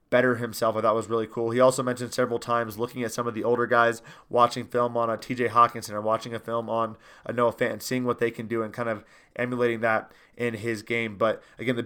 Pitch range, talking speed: 115-130 Hz, 260 wpm